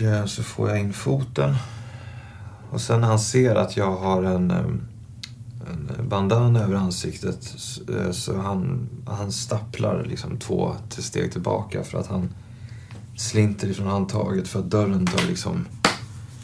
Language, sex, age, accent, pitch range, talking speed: Swedish, male, 30-49, native, 100-120 Hz, 130 wpm